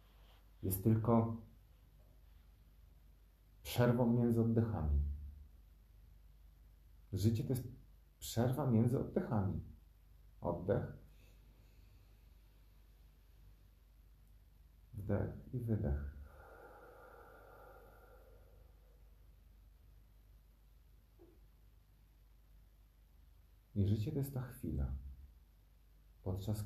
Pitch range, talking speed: 75-105 Hz, 50 wpm